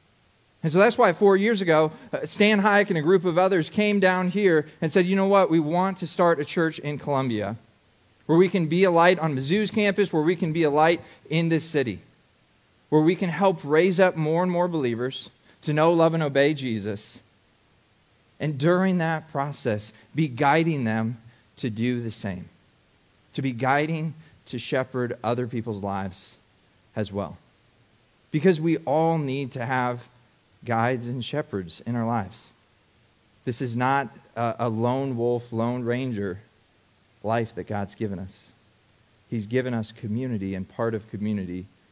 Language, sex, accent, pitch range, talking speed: English, male, American, 110-160 Hz, 170 wpm